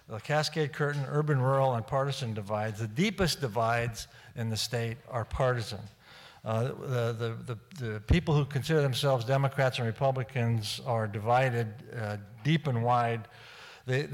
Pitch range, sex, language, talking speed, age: 115-140 Hz, male, English, 145 wpm, 50-69